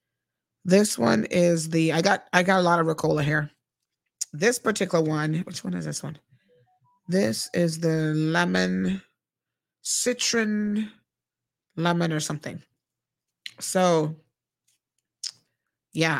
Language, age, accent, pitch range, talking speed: English, 30-49, American, 150-180 Hz, 115 wpm